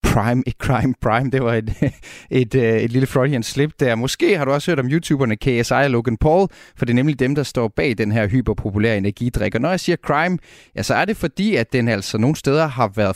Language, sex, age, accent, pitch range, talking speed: Danish, male, 30-49, native, 115-140 Hz, 245 wpm